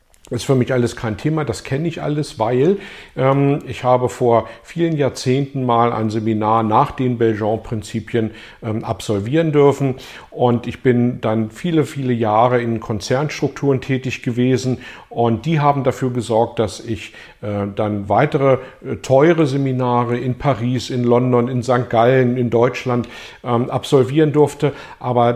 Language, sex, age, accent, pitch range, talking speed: German, male, 50-69, German, 115-140 Hz, 155 wpm